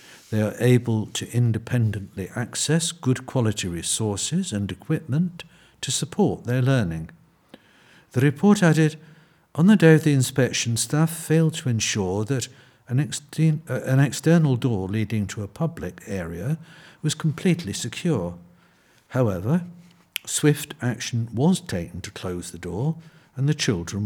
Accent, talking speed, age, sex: British, 130 wpm, 60-79, male